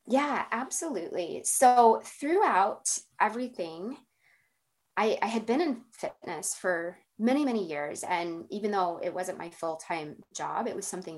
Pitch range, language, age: 170-225 Hz, English, 20-39